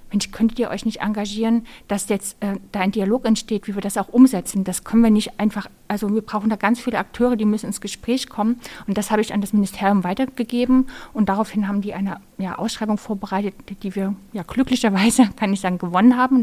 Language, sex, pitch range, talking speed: German, female, 195-230 Hz, 225 wpm